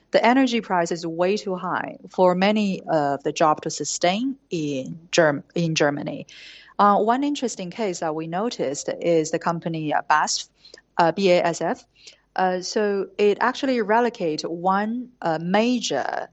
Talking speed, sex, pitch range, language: 150 wpm, female, 160-205 Hz, English